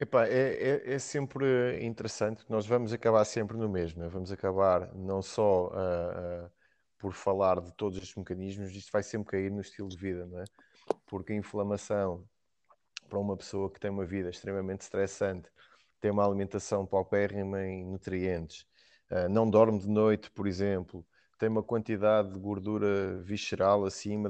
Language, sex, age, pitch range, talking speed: Portuguese, male, 20-39, 95-105 Hz, 170 wpm